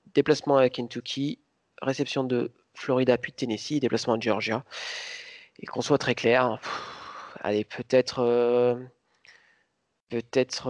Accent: French